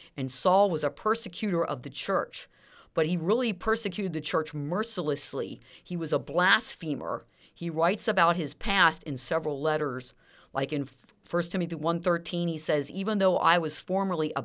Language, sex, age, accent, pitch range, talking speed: English, female, 40-59, American, 145-185 Hz, 165 wpm